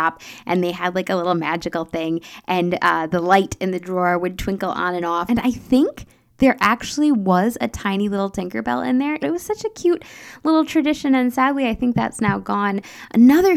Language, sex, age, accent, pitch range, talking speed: English, female, 10-29, American, 180-255 Hz, 210 wpm